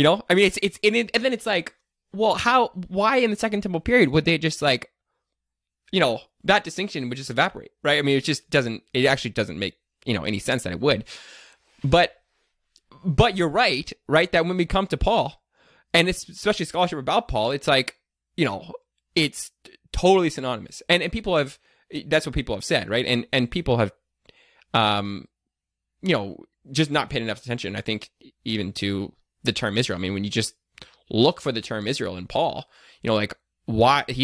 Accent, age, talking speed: American, 20-39, 205 wpm